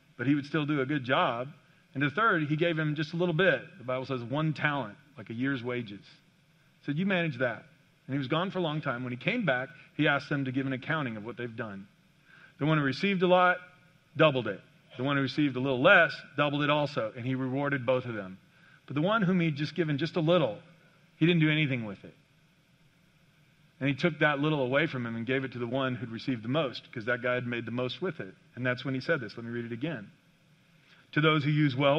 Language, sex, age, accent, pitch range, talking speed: English, male, 40-59, American, 135-170 Hz, 260 wpm